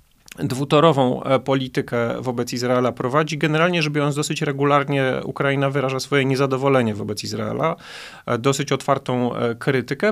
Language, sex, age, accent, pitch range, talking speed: Polish, male, 40-59, native, 125-145 Hz, 115 wpm